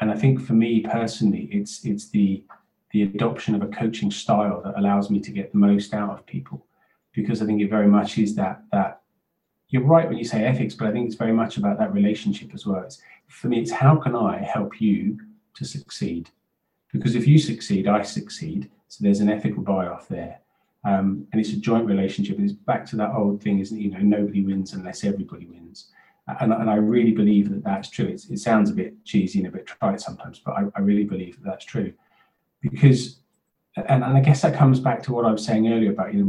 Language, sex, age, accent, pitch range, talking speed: English, male, 30-49, British, 100-115 Hz, 225 wpm